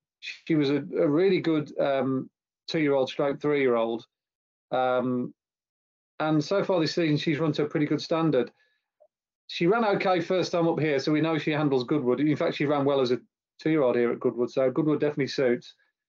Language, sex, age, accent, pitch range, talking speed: English, male, 30-49, British, 135-160 Hz, 190 wpm